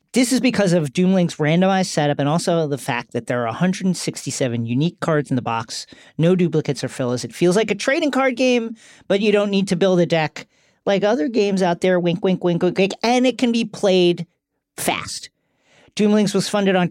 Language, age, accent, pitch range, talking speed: English, 40-59, American, 165-245 Hz, 210 wpm